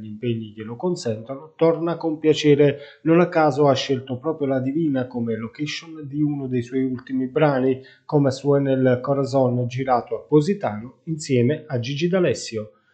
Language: Italian